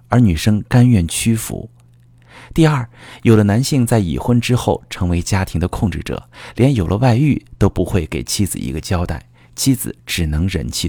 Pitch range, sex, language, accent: 85-120 Hz, male, Chinese, native